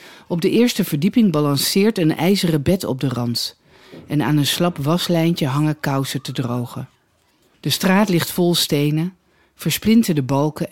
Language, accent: Dutch, Dutch